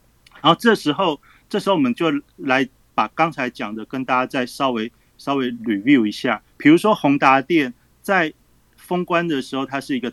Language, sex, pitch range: Chinese, male, 125-180 Hz